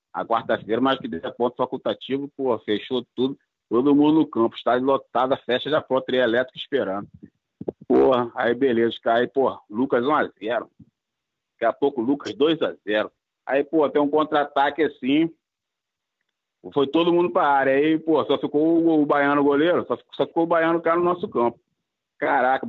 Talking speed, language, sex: 175 wpm, Portuguese, male